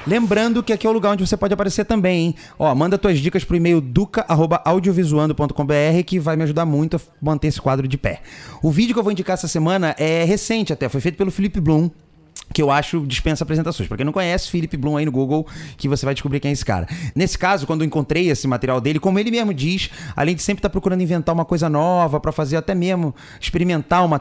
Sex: male